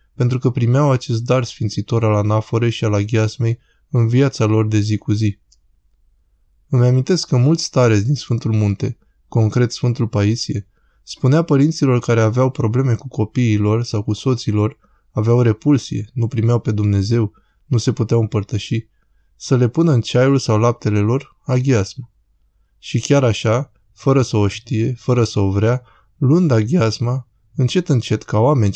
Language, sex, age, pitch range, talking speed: Romanian, male, 20-39, 105-130 Hz, 155 wpm